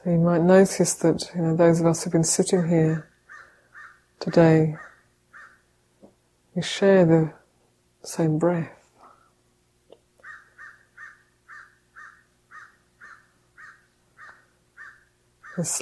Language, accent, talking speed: English, British, 85 wpm